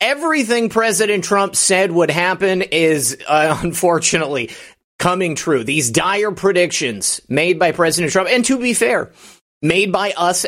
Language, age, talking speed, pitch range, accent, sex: English, 30-49, 145 wpm, 155-200 Hz, American, male